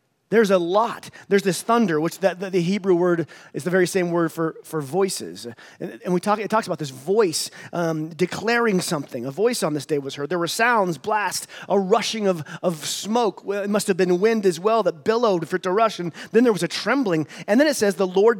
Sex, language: male, English